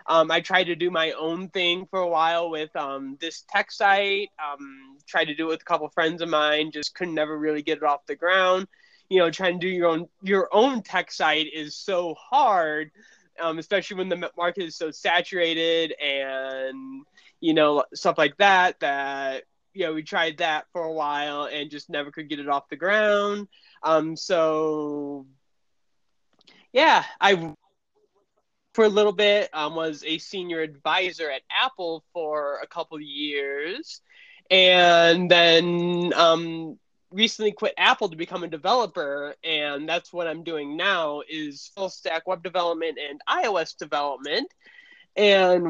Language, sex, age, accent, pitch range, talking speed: English, male, 20-39, American, 155-190 Hz, 170 wpm